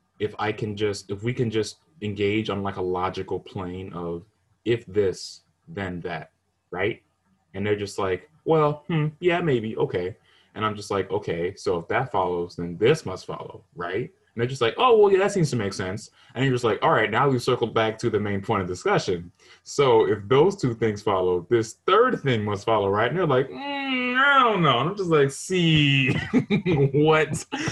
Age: 20-39